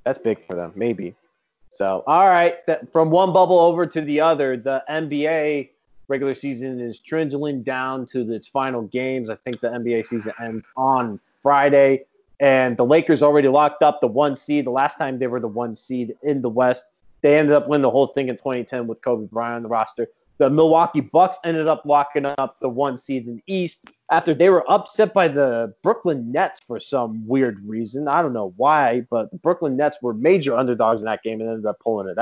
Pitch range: 120-150 Hz